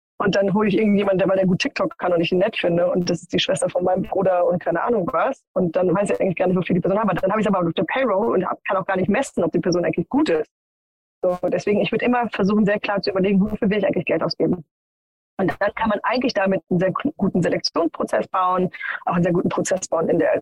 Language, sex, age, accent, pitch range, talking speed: German, female, 20-39, German, 185-215 Hz, 275 wpm